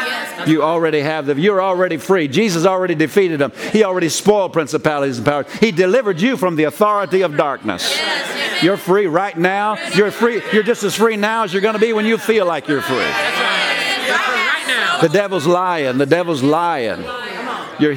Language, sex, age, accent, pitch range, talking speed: English, male, 50-69, American, 145-195 Hz, 175 wpm